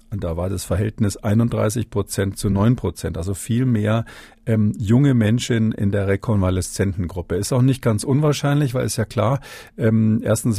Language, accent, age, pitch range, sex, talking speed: German, German, 50-69, 100-125 Hz, male, 165 wpm